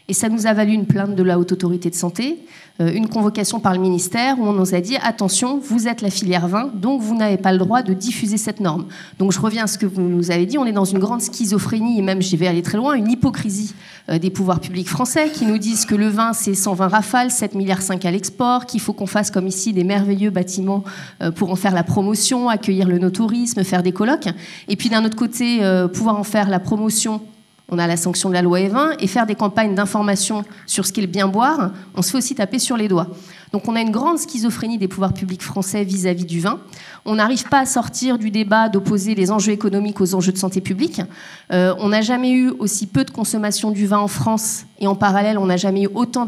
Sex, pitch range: female, 185-225 Hz